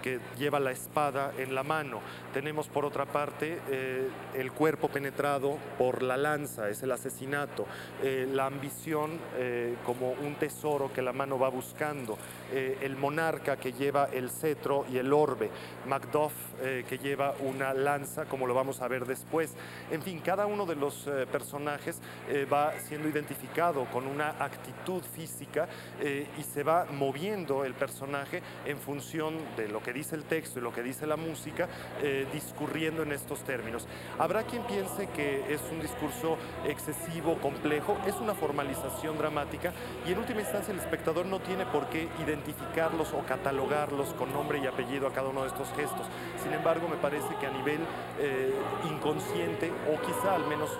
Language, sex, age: Spanish, male, 40-59